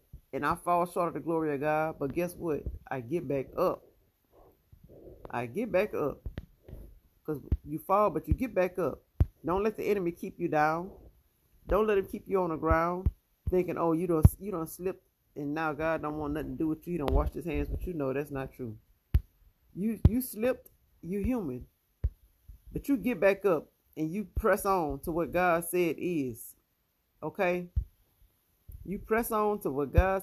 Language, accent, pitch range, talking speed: English, American, 145-190 Hz, 195 wpm